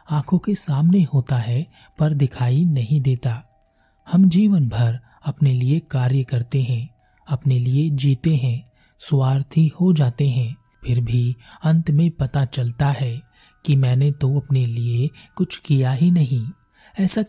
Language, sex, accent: Hindi, male, native